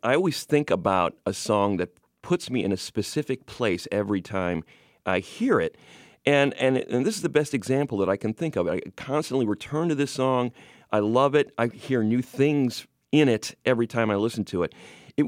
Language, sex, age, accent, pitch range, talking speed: English, male, 40-59, American, 95-135 Hz, 210 wpm